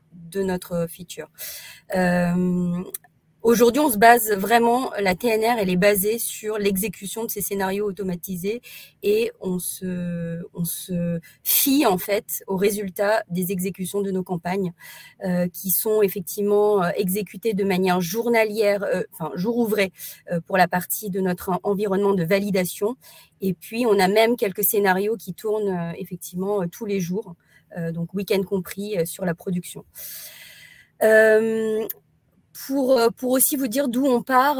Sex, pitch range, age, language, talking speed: female, 180-220 Hz, 30-49, French, 145 wpm